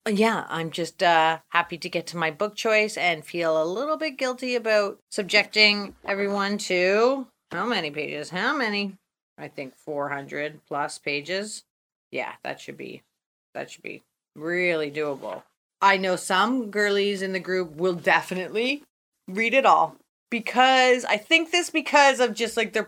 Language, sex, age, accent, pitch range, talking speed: English, female, 30-49, American, 170-225 Hz, 160 wpm